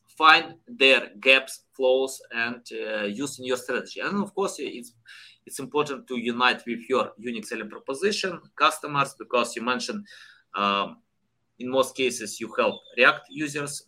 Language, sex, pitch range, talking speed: English, male, 125-175 Hz, 150 wpm